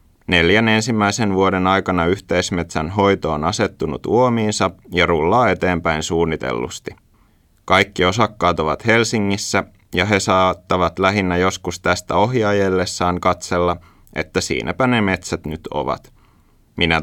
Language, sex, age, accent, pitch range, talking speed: Finnish, male, 30-49, native, 85-100 Hz, 115 wpm